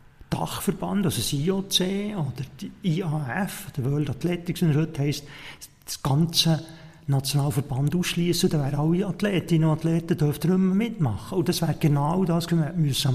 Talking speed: 160 wpm